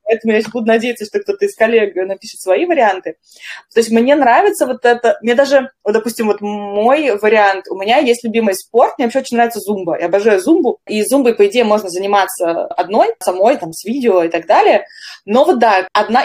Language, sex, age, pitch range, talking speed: Russian, female, 20-39, 195-240 Hz, 205 wpm